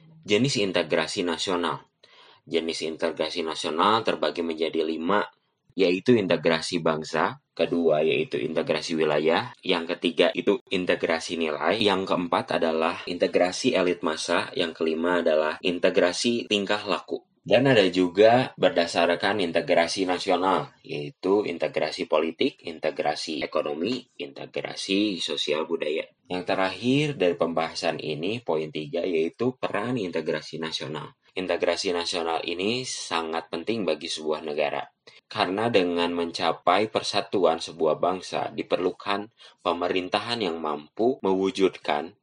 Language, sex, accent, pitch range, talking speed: Indonesian, male, native, 80-95 Hz, 110 wpm